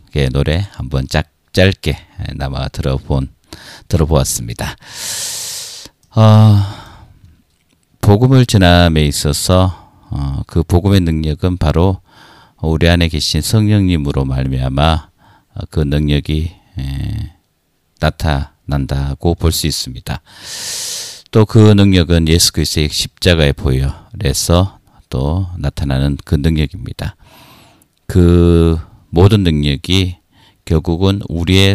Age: 40-59